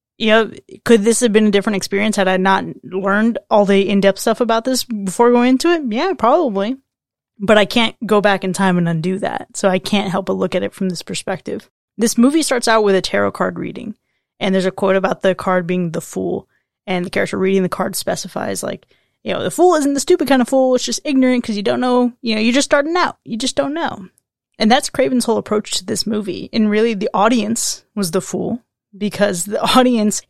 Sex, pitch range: female, 195-240 Hz